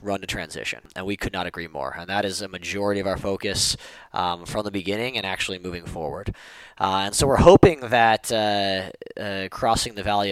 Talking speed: 210 wpm